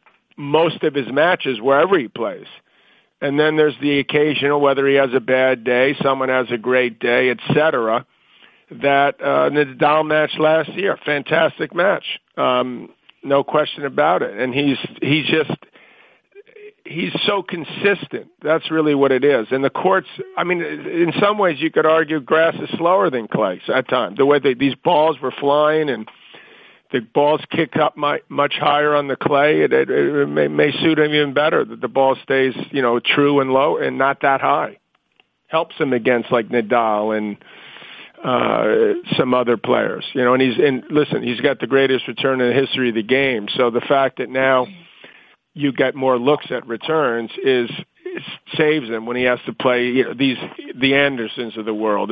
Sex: male